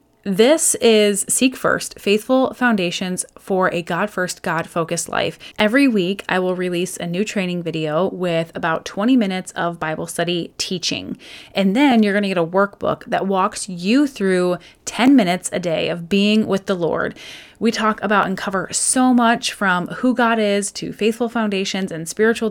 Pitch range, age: 175-220 Hz, 20-39